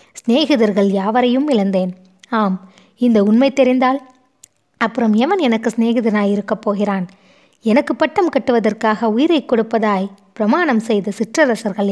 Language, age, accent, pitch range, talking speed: Tamil, 20-39, native, 200-250 Hz, 105 wpm